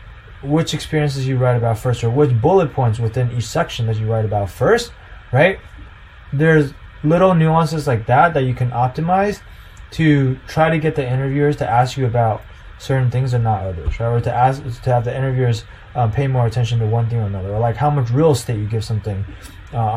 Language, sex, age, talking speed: English, male, 20-39, 210 wpm